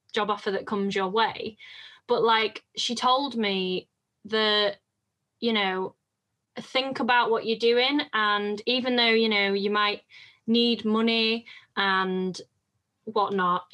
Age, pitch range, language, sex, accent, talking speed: 10-29, 200-235 Hz, English, female, British, 130 wpm